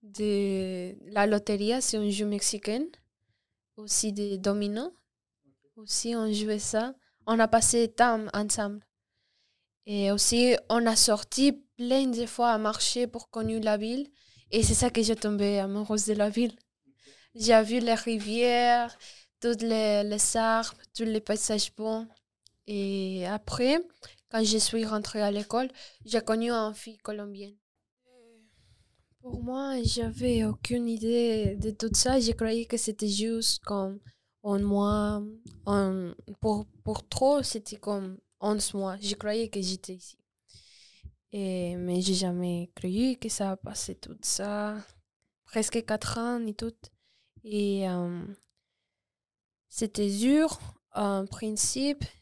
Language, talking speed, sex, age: French, 135 wpm, female, 10-29